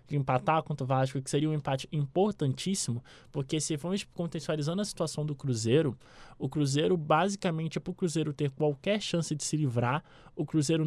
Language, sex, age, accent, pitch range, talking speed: Portuguese, male, 20-39, Brazilian, 140-175 Hz, 175 wpm